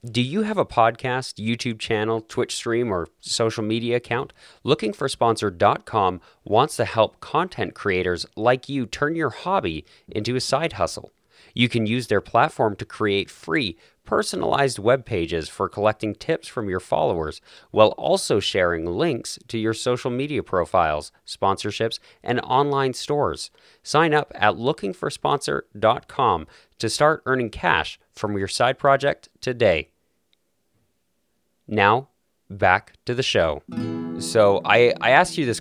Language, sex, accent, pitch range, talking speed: English, male, American, 90-120 Hz, 140 wpm